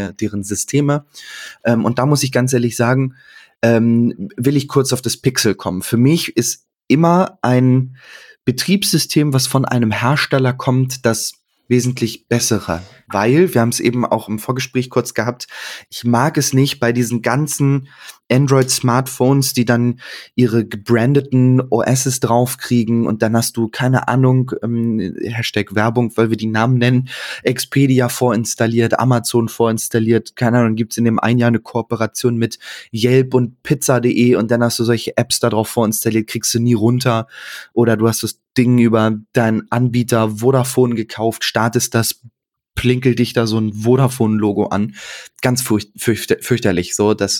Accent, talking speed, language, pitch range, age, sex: German, 155 wpm, German, 115-130 Hz, 20-39, male